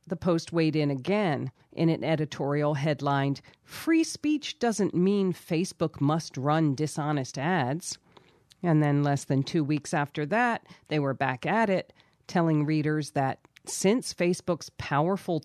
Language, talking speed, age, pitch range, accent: English, 145 wpm, 40-59, 140-180 Hz, American